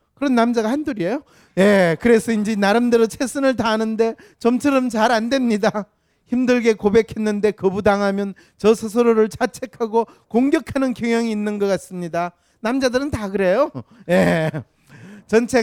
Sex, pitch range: male, 175-230 Hz